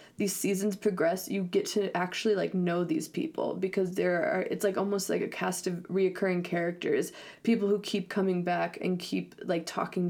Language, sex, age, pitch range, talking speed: English, female, 20-39, 190-240 Hz, 190 wpm